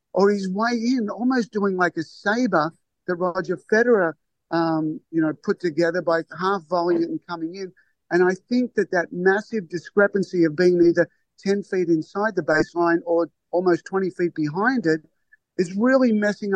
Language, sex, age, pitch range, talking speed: English, male, 50-69, 165-200 Hz, 170 wpm